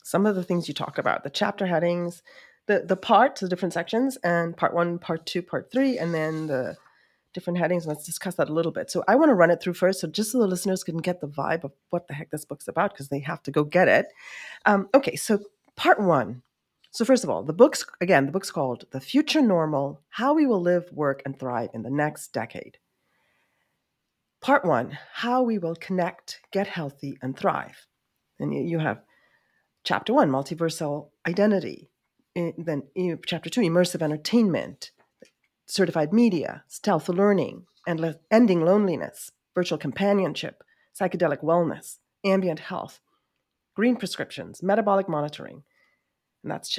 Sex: female